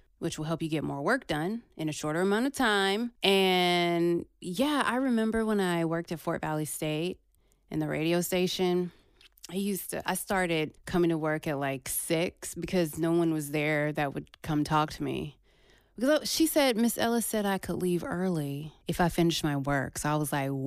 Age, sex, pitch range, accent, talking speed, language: 20-39, female, 160-220 Hz, American, 205 wpm, English